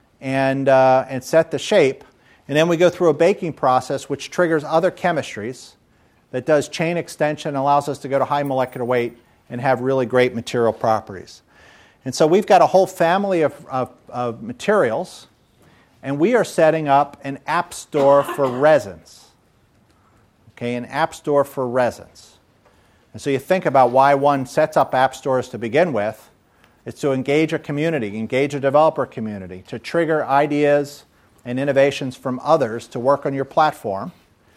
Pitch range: 125-160 Hz